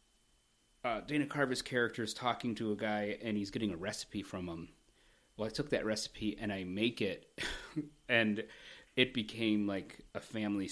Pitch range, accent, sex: 100-130 Hz, American, male